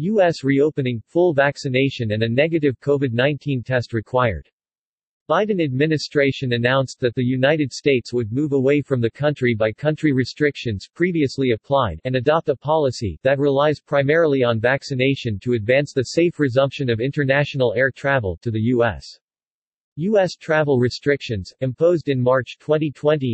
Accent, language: American, English